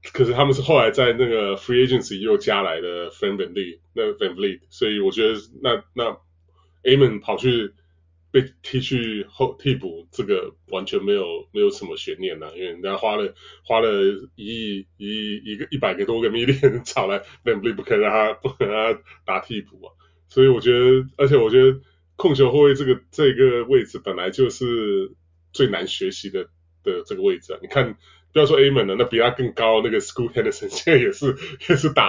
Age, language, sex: 20-39, Chinese, male